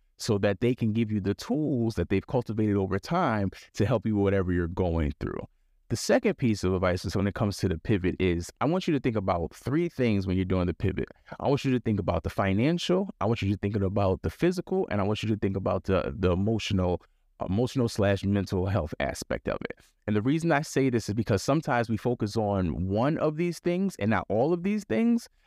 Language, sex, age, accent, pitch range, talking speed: English, male, 30-49, American, 100-130 Hz, 240 wpm